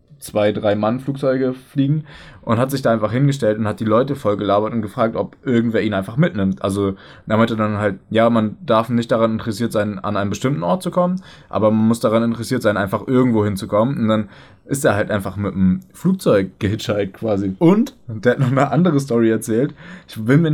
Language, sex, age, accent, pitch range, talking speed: German, male, 20-39, German, 105-140 Hz, 220 wpm